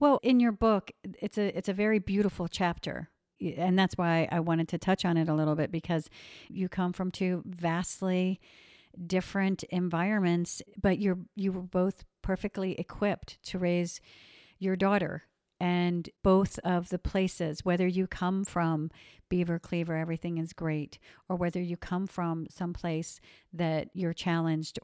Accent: American